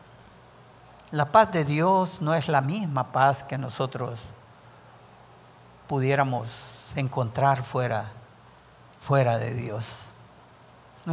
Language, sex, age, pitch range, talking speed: English, male, 50-69, 130-170 Hz, 95 wpm